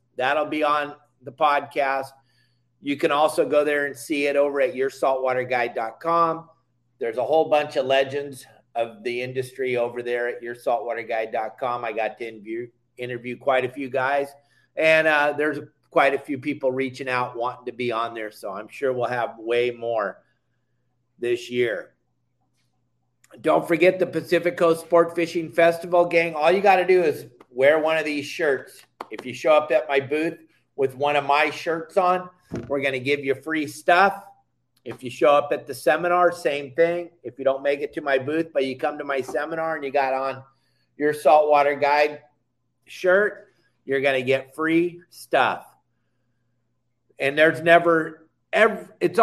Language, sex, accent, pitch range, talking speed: English, male, American, 125-155 Hz, 175 wpm